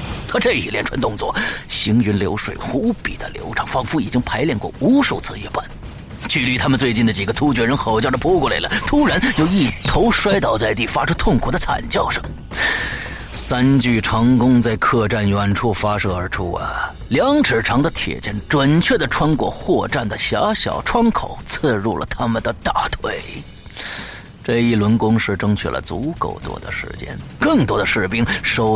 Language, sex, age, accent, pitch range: Chinese, male, 30-49, native, 105-145 Hz